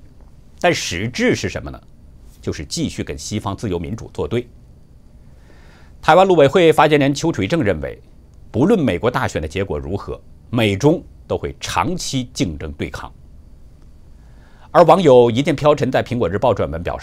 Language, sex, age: Chinese, male, 50-69